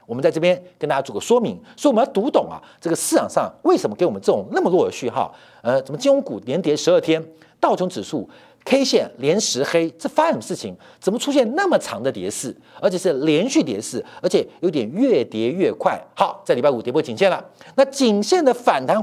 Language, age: Chinese, 50-69